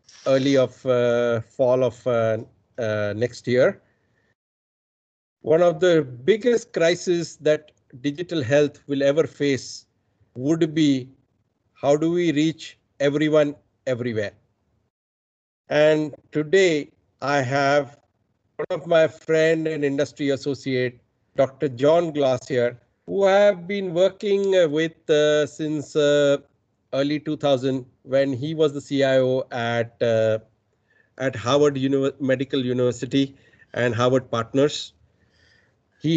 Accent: Indian